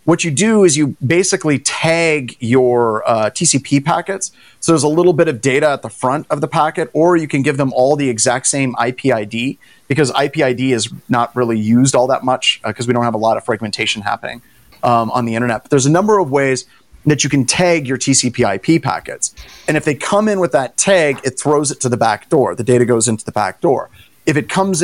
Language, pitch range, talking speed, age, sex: English, 120-155 Hz, 235 wpm, 30-49, male